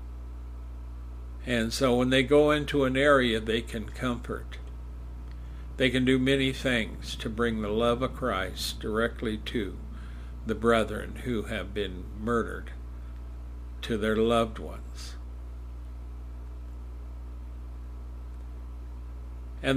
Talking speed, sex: 105 wpm, male